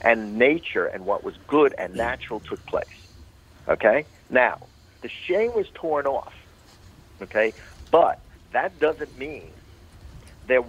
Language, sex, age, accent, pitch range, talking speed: English, male, 50-69, American, 105-140 Hz, 130 wpm